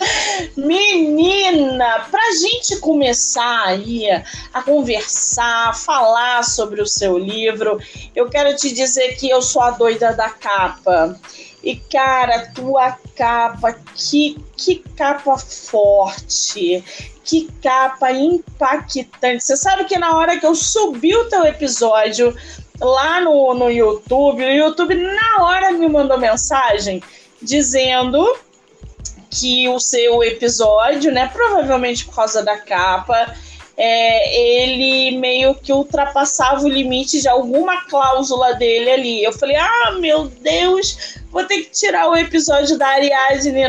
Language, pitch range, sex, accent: Portuguese, 235-315 Hz, female, Brazilian